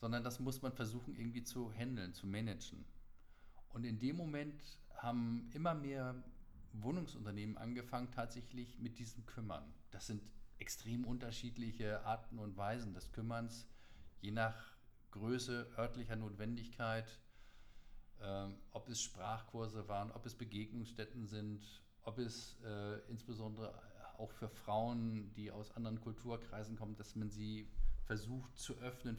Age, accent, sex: 50-69, German, male